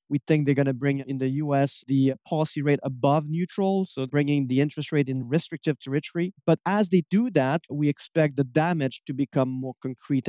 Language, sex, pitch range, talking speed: English, male, 135-160 Hz, 205 wpm